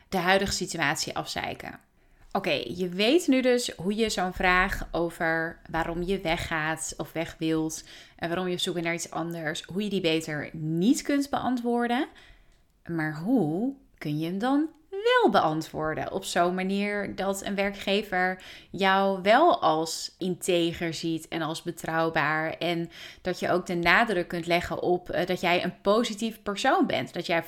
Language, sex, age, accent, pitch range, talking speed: Dutch, female, 30-49, Dutch, 170-225 Hz, 160 wpm